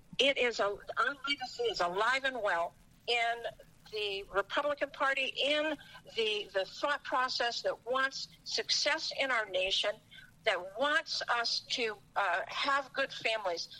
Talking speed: 140 wpm